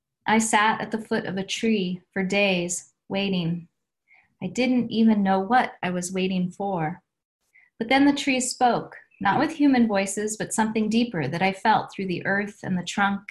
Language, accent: English, American